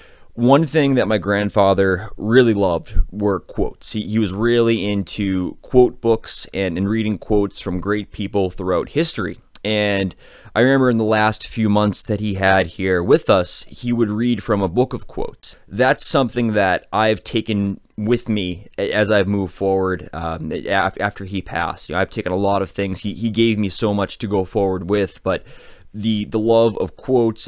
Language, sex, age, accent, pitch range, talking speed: English, male, 20-39, American, 95-110 Hz, 190 wpm